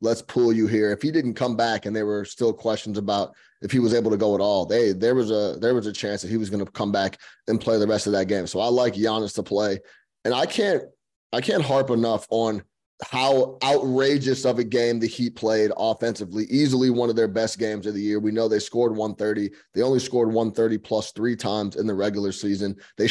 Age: 20-39